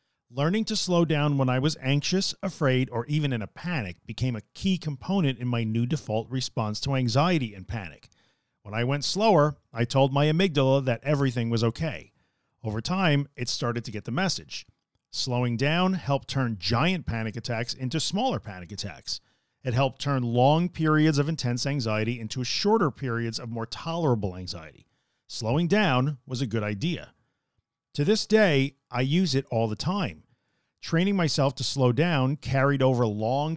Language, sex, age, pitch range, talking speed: English, male, 40-59, 115-160 Hz, 170 wpm